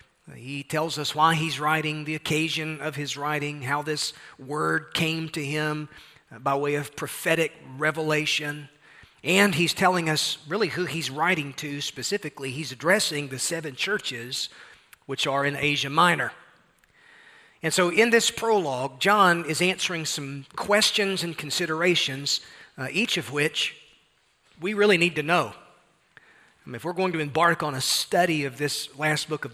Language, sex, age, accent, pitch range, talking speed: English, male, 40-59, American, 145-180 Hz, 155 wpm